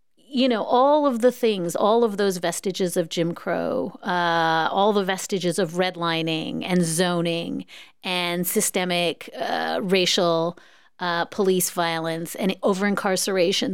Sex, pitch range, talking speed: female, 180-235 Hz, 130 wpm